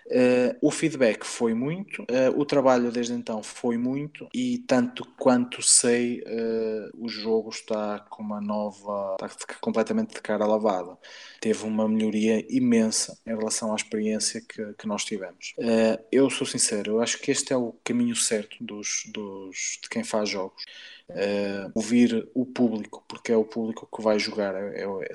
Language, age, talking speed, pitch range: Portuguese, 20-39, 165 wpm, 110-135 Hz